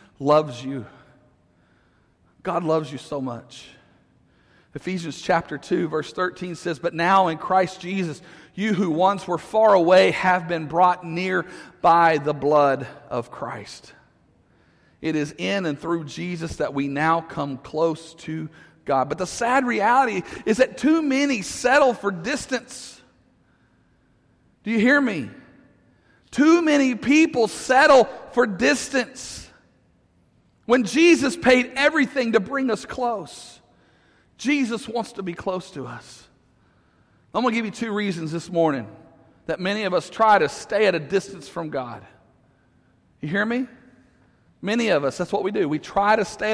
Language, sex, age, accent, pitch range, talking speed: English, male, 40-59, American, 150-220 Hz, 150 wpm